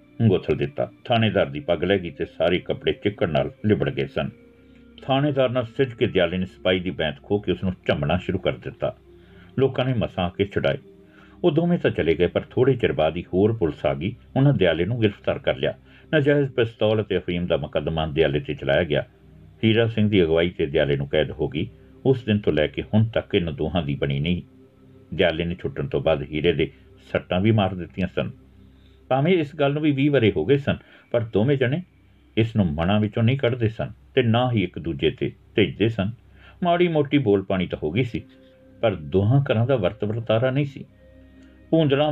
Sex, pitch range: male, 85-130 Hz